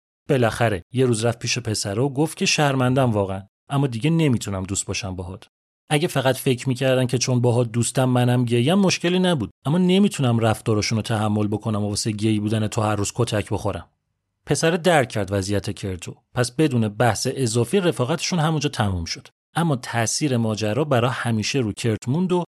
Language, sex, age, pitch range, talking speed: Persian, male, 30-49, 110-145 Hz, 165 wpm